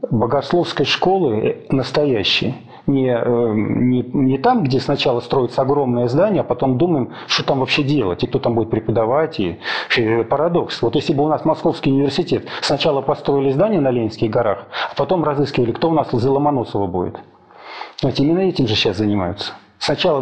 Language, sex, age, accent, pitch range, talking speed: Russian, male, 40-59, native, 125-170 Hz, 160 wpm